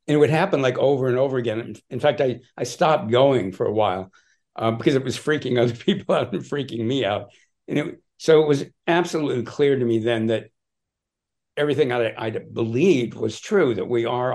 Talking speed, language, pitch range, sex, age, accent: 210 wpm, English, 110-130 Hz, male, 60-79, American